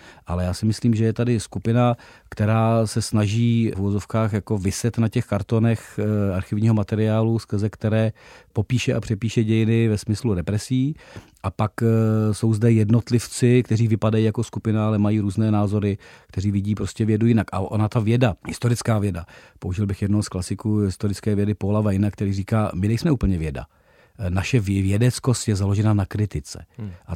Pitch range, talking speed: 100-115 Hz, 165 wpm